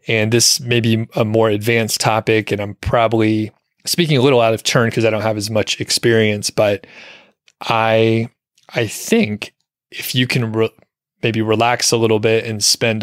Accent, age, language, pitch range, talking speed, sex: American, 30-49, English, 105-120 Hz, 175 wpm, male